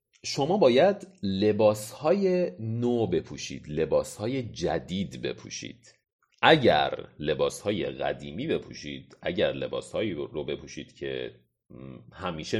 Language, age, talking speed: Persian, 40-59, 85 wpm